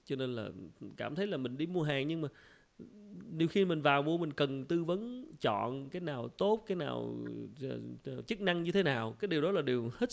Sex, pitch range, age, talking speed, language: male, 120-180 Hz, 20-39, 225 wpm, English